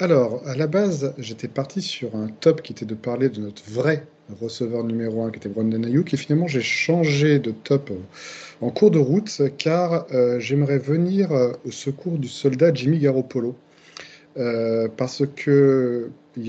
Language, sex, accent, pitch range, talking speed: French, male, French, 120-150 Hz, 165 wpm